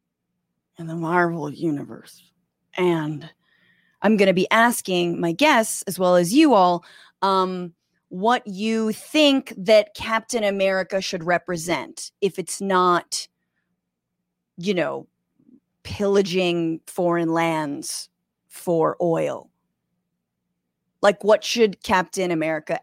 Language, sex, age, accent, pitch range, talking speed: English, female, 30-49, American, 180-250 Hz, 110 wpm